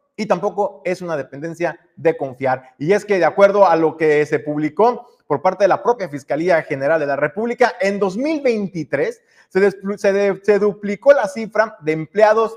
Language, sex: Spanish, male